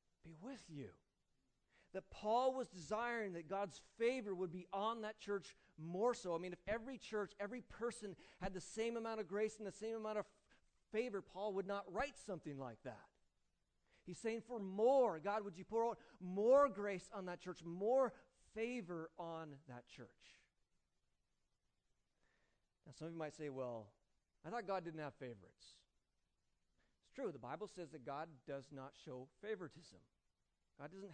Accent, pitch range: American, 155-215 Hz